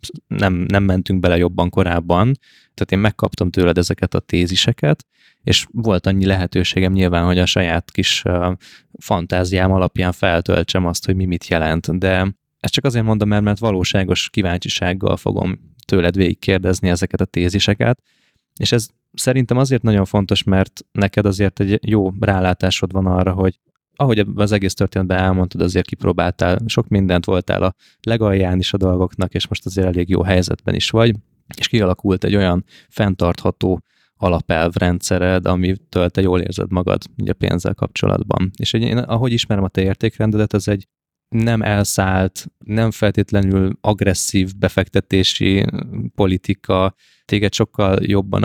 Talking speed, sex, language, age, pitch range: 145 wpm, male, Hungarian, 20-39, 90-105 Hz